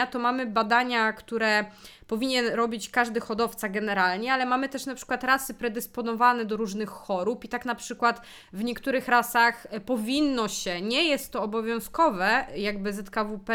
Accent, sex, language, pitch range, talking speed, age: native, female, Polish, 210-250 Hz, 150 wpm, 20-39